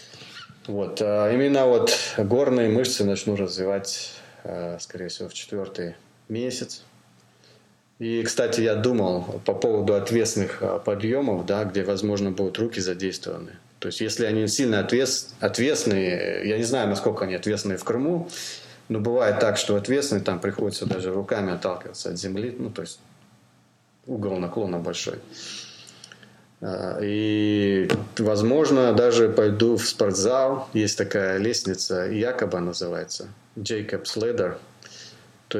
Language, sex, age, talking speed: Russian, male, 30-49, 125 wpm